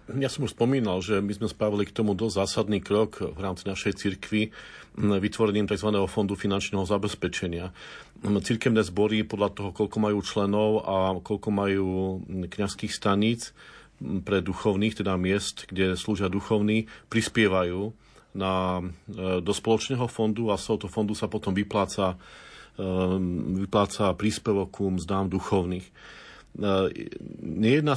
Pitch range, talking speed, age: 95-110 Hz, 125 wpm, 40-59